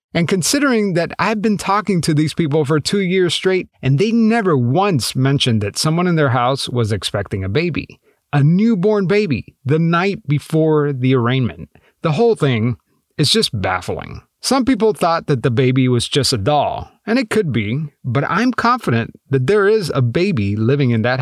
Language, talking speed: English, 185 wpm